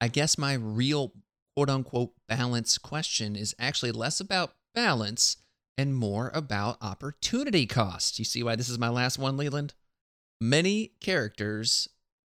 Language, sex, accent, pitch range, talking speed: English, male, American, 110-140 Hz, 135 wpm